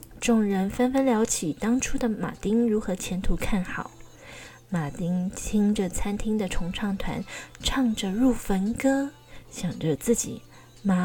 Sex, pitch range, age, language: female, 185-245 Hz, 20-39, Chinese